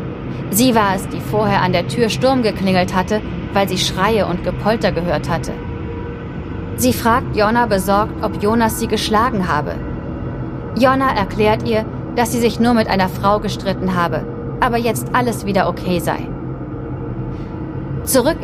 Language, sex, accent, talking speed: German, female, German, 150 wpm